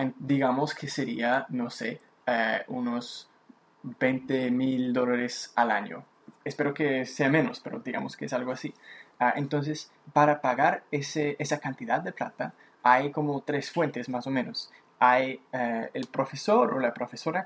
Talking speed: 150 wpm